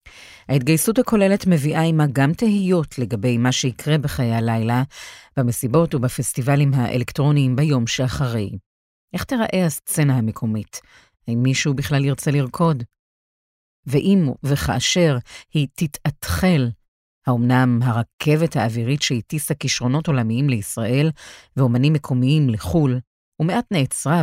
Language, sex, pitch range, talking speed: Hebrew, female, 125-155 Hz, 100 wpm